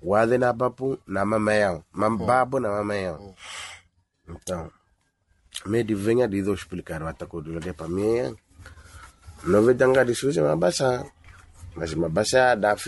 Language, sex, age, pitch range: Portuguese, male, 30-49, 90-120 Hz